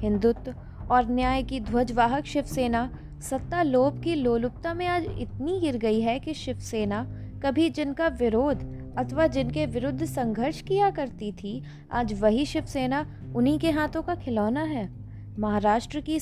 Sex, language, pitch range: female, Hindi, 210-280 Hz